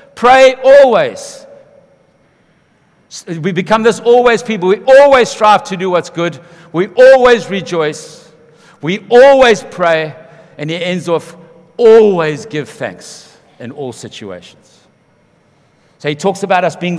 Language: English